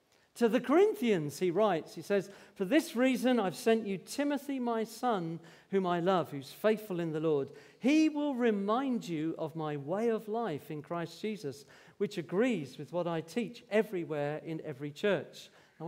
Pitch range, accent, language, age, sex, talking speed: 165-230 Hz, British, English, 50-69, male, 180 wpm